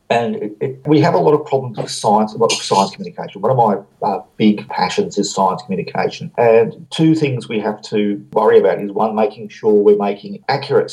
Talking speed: 220 wpm